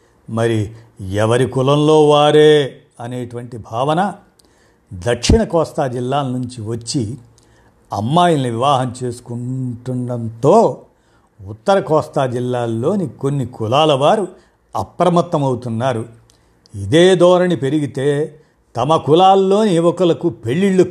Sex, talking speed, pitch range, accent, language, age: male, 80 wpm, 120-160 Hz, native, Telugu, 50-69